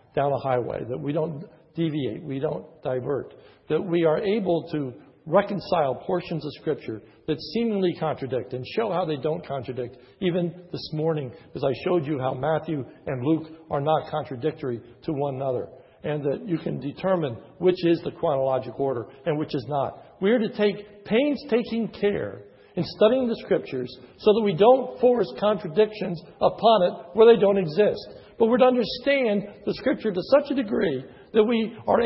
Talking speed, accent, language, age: 175 wpm, American, English, 60-79